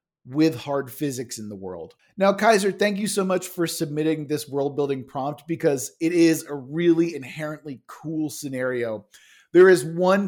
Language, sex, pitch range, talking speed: English, male, 150-195 Hz, 170 wpm